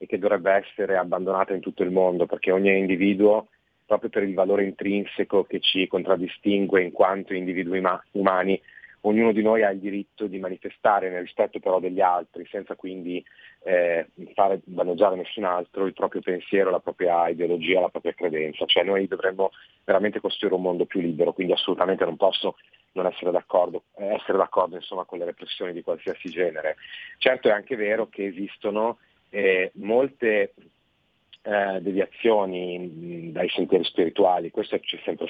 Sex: male